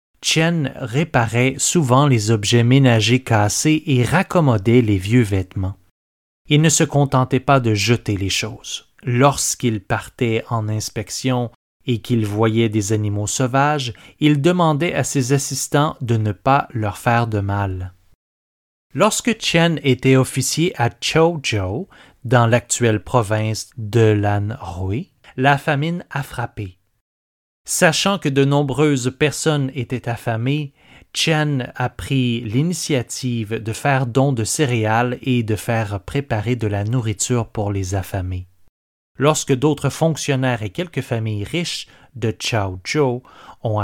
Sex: male